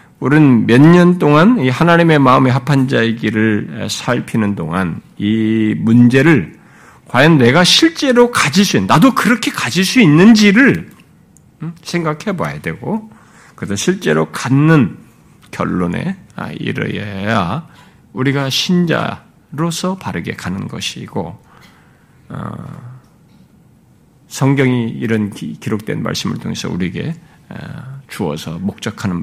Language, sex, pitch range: Korean, male, 115-170 Hz